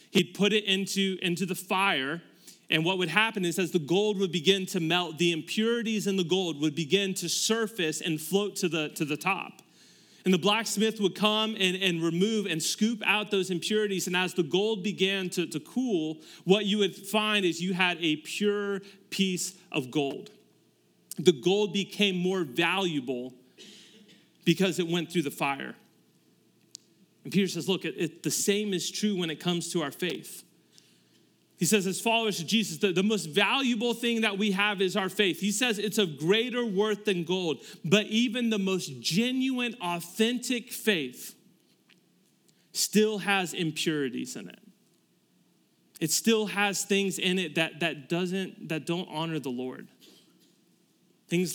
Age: 30-49